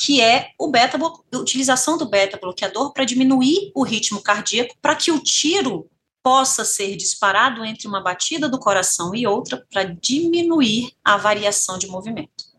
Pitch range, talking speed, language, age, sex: 190-290 Hz, 150 wpm, Portuguese, 30-49, female